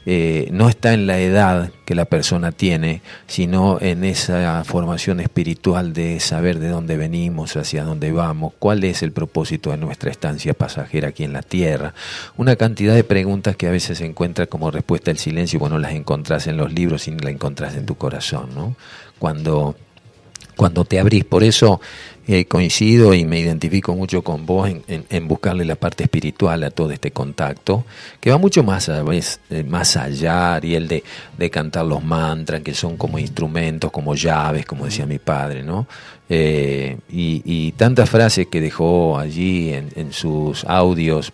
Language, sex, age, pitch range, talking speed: Spanish, male, 40-59, 80-95 Hz, 180 wpm